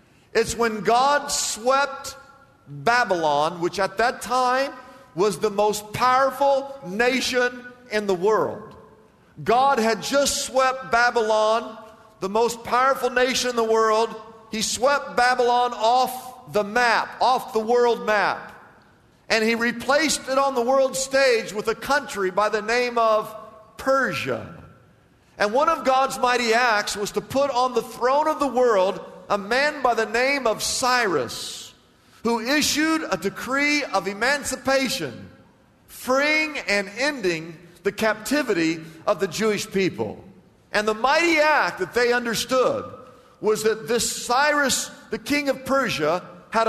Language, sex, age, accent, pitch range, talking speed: English, male, 50-69, American, 215-265 Hz, 140 wpm